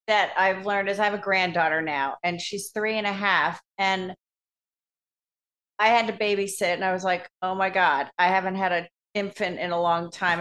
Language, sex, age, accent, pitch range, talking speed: English, female, 40-59, American, 175-220 Hz, 210 wpm